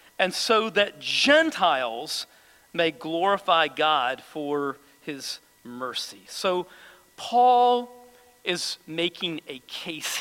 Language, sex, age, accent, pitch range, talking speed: English, male, 40-59, American, 185-260 Hz, 95 wpm